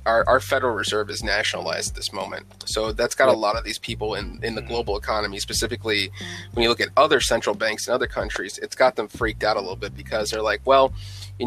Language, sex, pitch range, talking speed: English, male, 100-120 Hz, 240 wpm